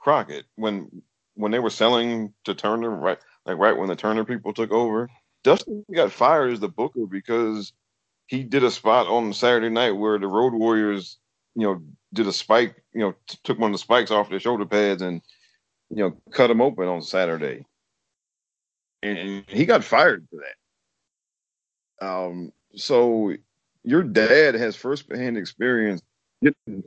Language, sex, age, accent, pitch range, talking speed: English, male, 40-59, American, 95-115 Hz, 165 wpm